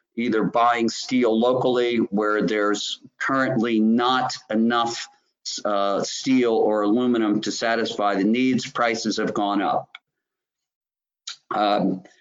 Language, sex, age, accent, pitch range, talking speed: English, male, 50-69, American, 120-150 Hz, 110 wpm